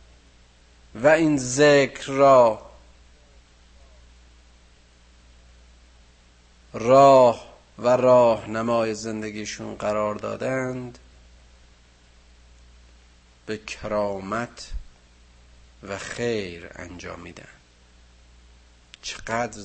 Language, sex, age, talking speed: Persian, male, 50-69, 55 wpm